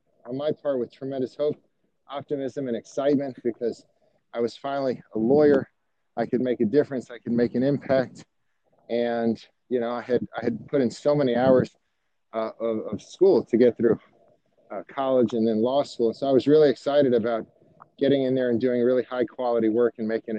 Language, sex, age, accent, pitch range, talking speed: English, male, 40-59, American, 115-140 Hz, 195 wpm